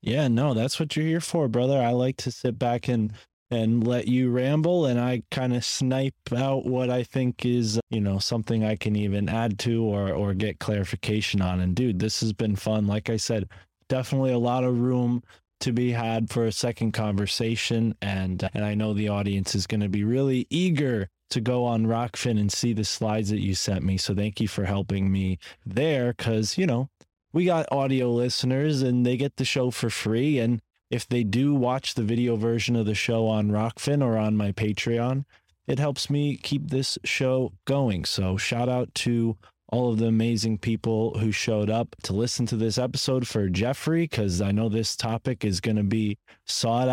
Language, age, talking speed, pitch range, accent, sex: English, 20-39, 205 wpm, 110-135 Hz, American, male